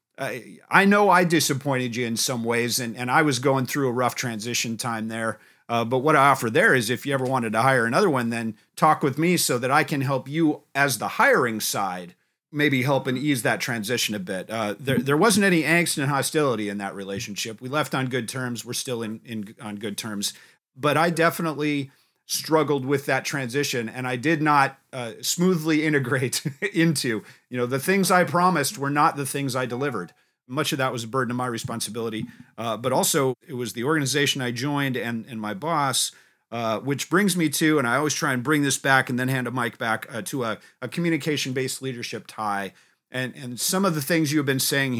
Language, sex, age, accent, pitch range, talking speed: English, male, 40-59, American, 120-150 Hz, 220 wpm